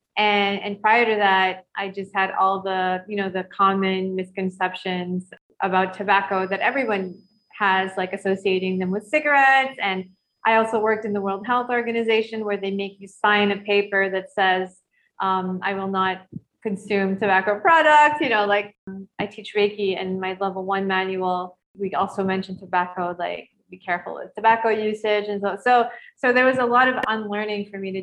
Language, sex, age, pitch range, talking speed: English, female, 20-39, 190-210 Hz, 180 wpm